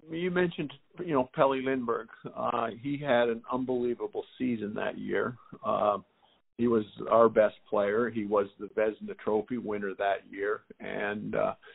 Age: 50-69